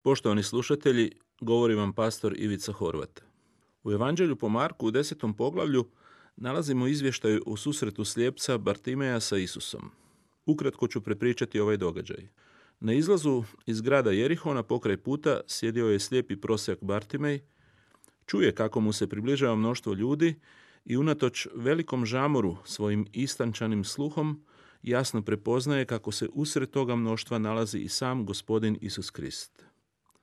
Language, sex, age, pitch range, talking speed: Croatian, male, 40-59, 110-145 Hz, 130 wpm